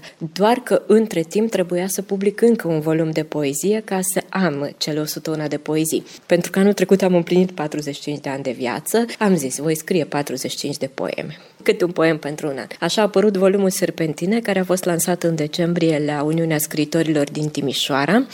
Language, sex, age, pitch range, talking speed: Romanian, female, 20-39, 150-190 Hz, 195 wpm